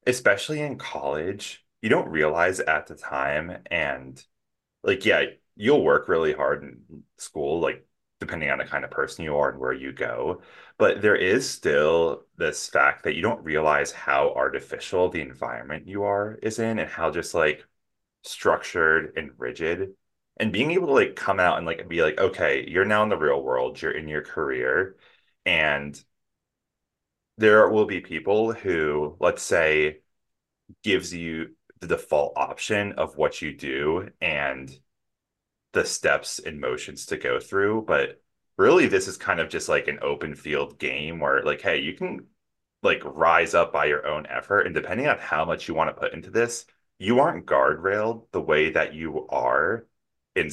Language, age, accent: English, 30-49, American